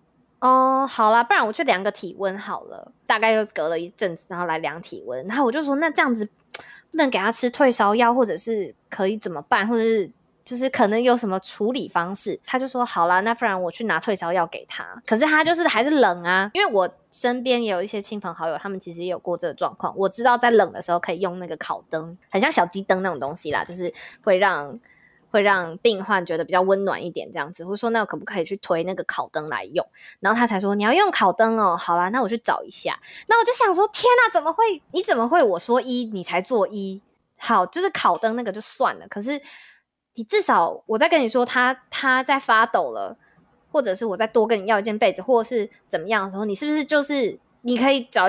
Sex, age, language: female, 20-39, Chinese